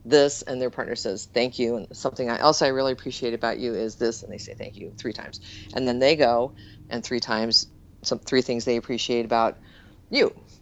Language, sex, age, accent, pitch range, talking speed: English, female, 40-59, American, 115-140 Hz, 215 wpm